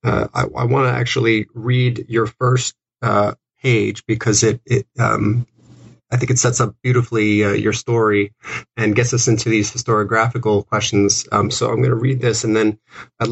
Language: English